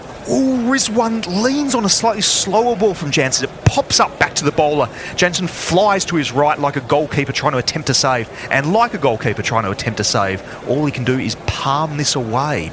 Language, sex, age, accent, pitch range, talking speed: English, male, 30-49, Australian, 110-165 Hz, 220 wpm